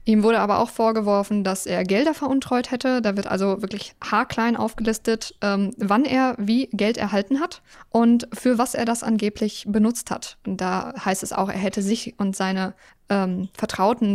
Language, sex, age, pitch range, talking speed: German, female, 10-29, 205-245 Hz, 180 wpm